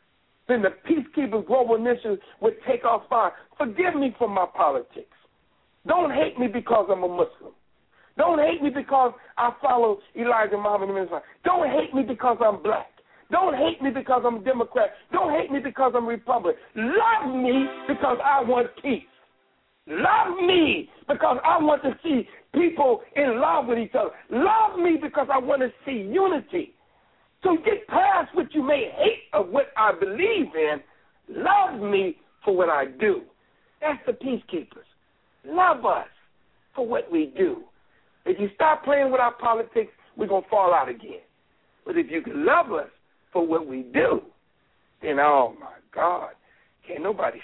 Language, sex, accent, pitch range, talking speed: English, male, American, 235-360 Hz, 170 wpm